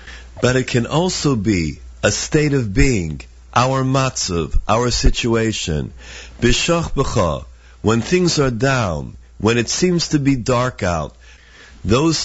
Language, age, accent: English, 50-69, American